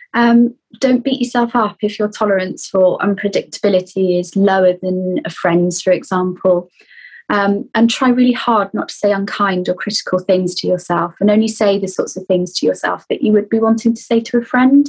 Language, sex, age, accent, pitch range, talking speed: English, female, 20-39, British, 185-240 Hz, 200 wpm